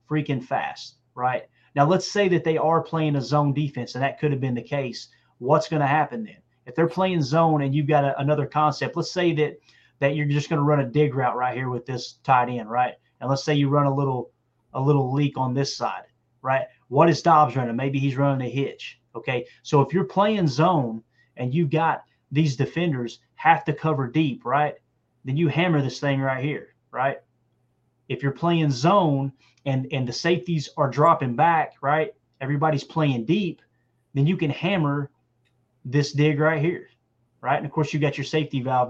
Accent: American